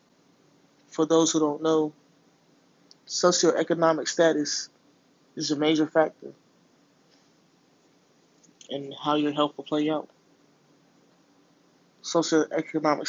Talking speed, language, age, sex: 85 wpm, English, 20-39, male